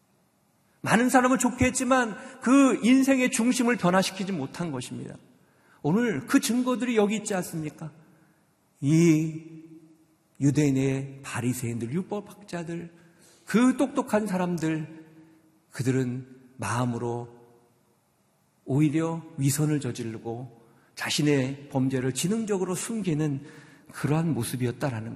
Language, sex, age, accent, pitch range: Korean, male, 50-69, native, 145-220 Hz